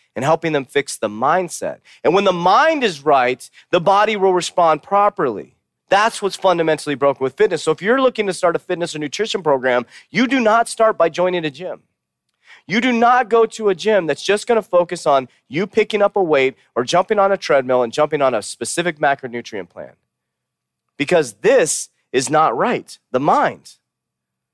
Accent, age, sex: American, 30-49, male